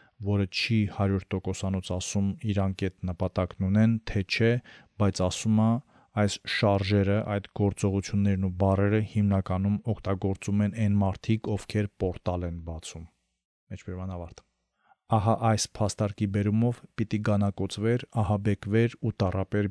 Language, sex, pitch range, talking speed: English, male, 95-105 Hz, 110 wpm